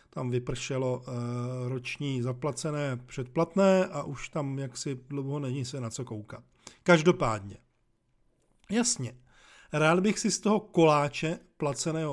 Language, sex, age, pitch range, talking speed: Czech, male, 40-59, 130-160 Hz, 120 wpm